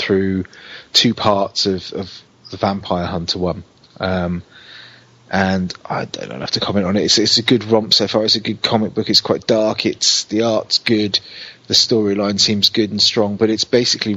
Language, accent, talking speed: English, British, 195 wpm